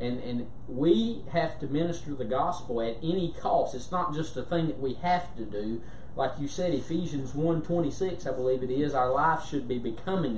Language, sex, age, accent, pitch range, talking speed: English, male, 30-49, American, 125-160 Hz, 200 wpm